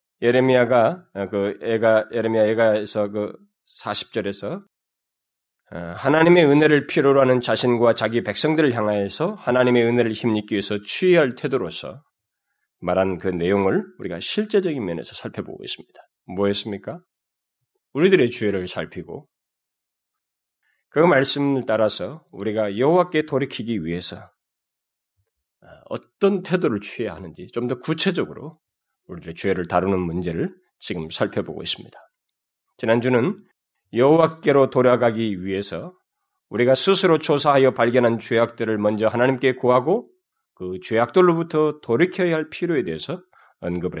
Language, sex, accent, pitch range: Korean, male, native, 105-175 Hz